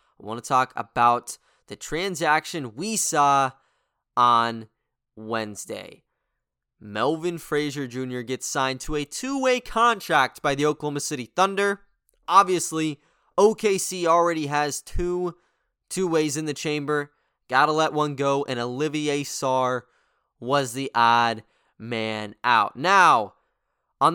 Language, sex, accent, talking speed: English, male, American, 120 wpm